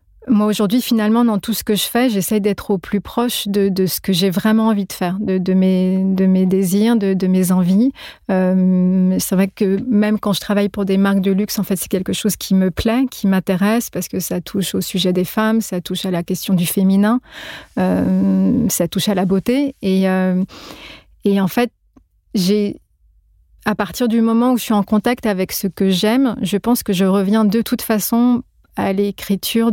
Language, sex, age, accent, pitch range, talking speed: French, female, 30-49, French, 190-220 Hz, 215 wpm